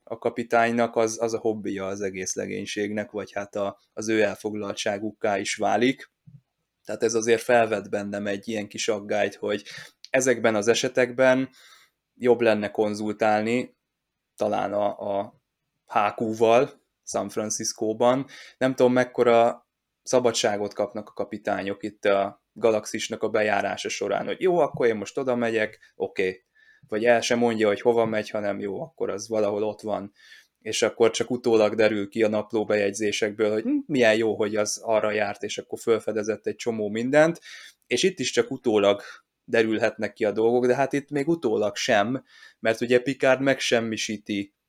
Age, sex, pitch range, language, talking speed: 20-39, male, 105-120 Hz, Hungarian, 155 wpm